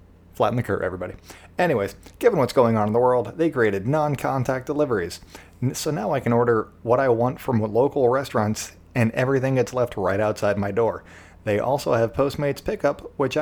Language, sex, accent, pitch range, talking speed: English, male, American, 100-135 Hz, 185 wpm